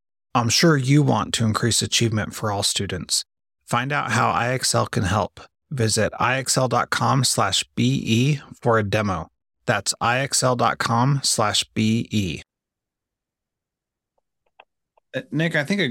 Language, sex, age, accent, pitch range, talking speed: English, male, 30-49, American, 100-125 Hz, 115 wpm